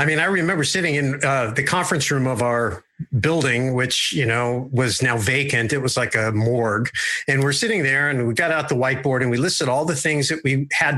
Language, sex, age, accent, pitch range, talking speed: English, male, 50-69, American, 125-145 Hz, 235 wpm